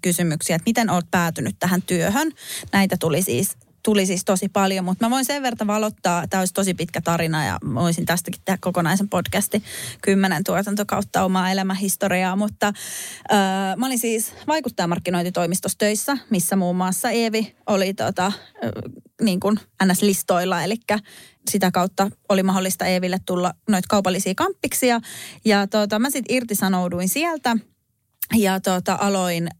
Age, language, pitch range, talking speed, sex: 30-49, Finnish, 185-220 Hz, 140 wpm, female